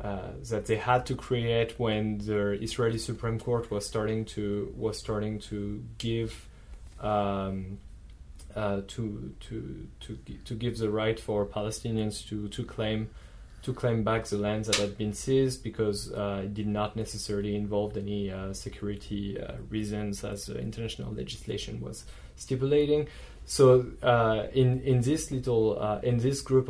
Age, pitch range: 20-39, 105-120 Hz